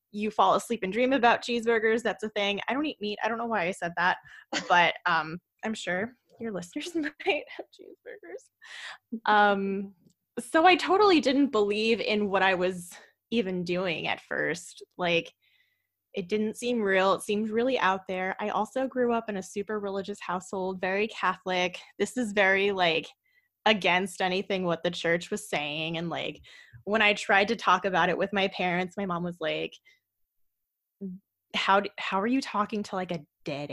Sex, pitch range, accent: female, 180-230 Hz, American